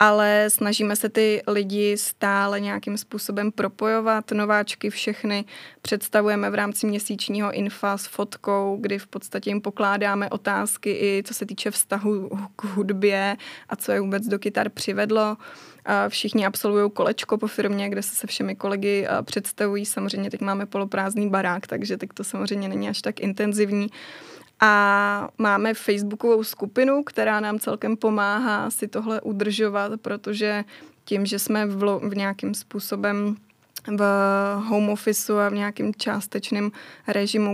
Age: 20-39